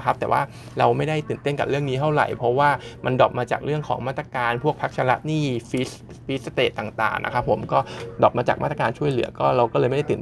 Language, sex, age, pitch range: Thai, male, 20-39, 120-140 Hz